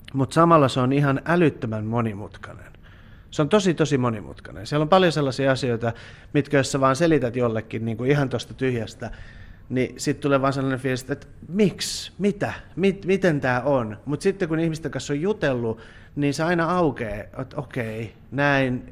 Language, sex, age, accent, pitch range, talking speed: Finnish, male, 30-49, native, 110-140 Hz, 180 wpm